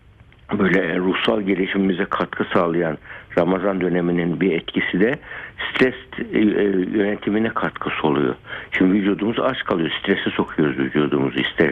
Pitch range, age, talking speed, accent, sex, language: 95-120 Hz, 60-79, 115 wpm, native, male, Turkish